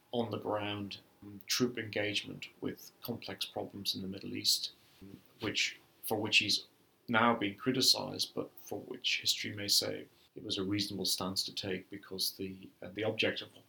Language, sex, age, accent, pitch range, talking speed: English, male, 40-59, British, 95-115 Hz, 165 wpm